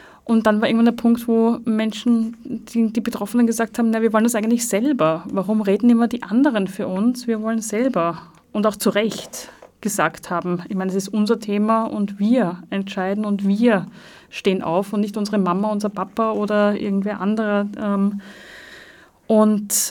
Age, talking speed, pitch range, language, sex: 30-49, 170 wpm, 195-235 Hz, German, female